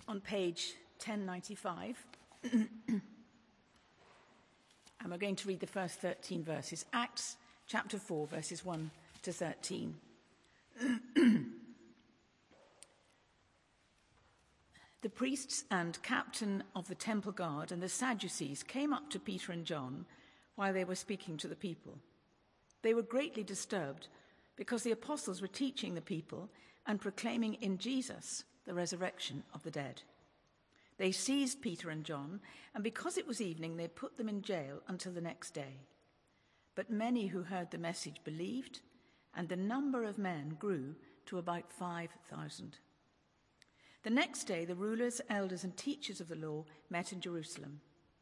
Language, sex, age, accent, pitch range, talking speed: English, female, 50-69, British, 175-225 Hz, 140 wpm